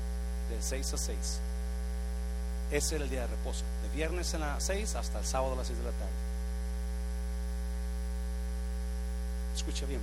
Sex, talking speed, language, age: male, 155 wpm, Spanish, 40-59